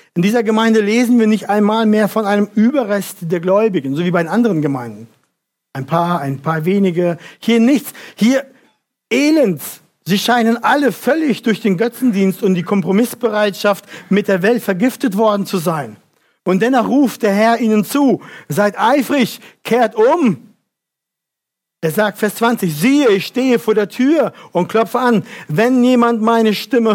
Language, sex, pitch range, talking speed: German, male, 185-230 Hz, 165 wpm